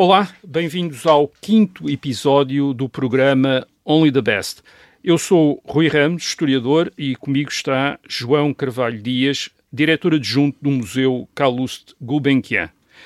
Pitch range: 130-165 Hz